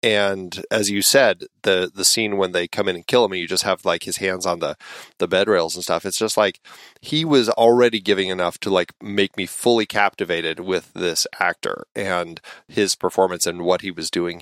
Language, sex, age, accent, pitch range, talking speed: English, male, 30-49, American, 100-125 Hz, 215 wpm